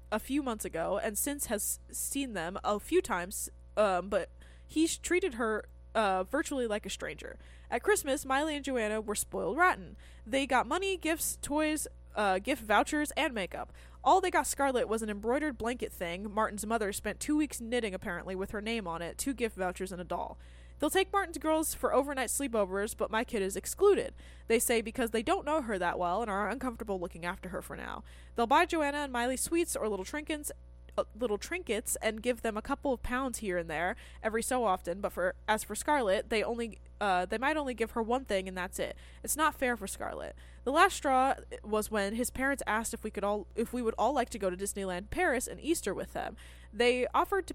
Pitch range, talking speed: 195-275 Hz, 220 wpm